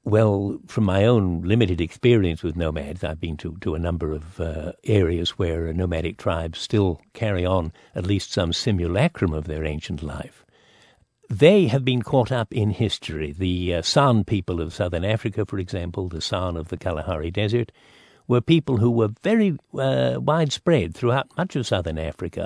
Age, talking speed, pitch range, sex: 60-79, 175 wpm, 90-120 Hz, male